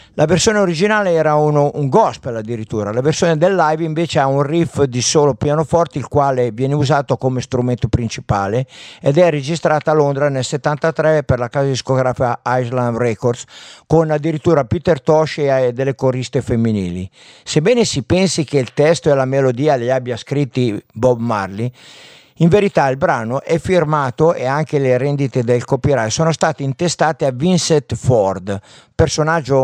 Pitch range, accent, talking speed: 125-160 Hz, native, 160 wpm